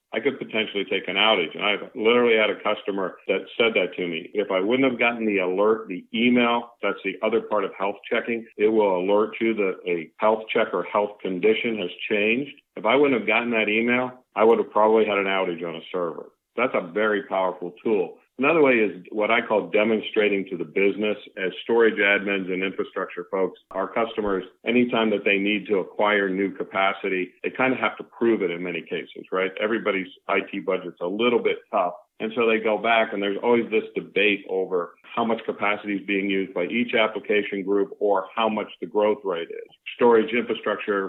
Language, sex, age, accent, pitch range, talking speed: English, male, 50-69, American, 95-115 Hz, 205 wpm